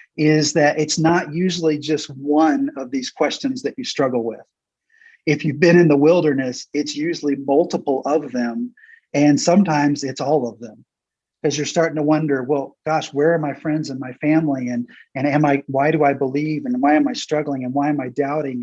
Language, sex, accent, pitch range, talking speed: English, male, American, 135-155 Hz, 205 wpm